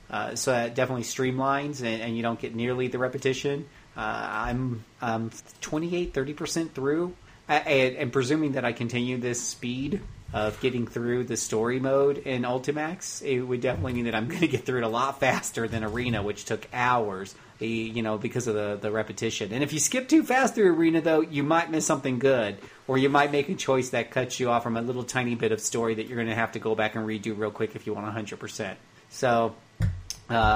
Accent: American